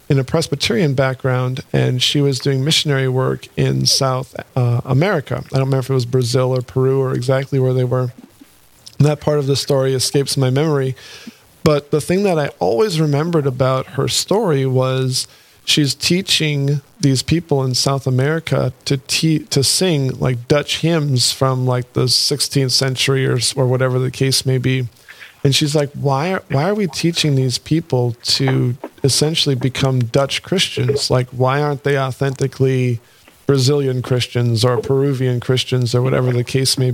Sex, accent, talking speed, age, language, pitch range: male, American, 170 wpm, 40-59, English, 130-145 Hz